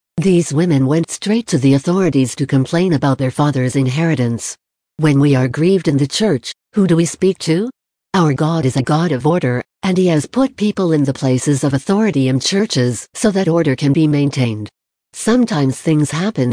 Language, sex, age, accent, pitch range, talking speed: English, female, 60-79, American, 135-180 Hz, 190 wpm